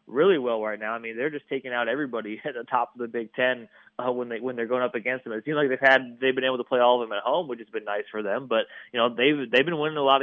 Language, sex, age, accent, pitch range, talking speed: English, male, 20-39, American, 115-130 Hz, 335 wpm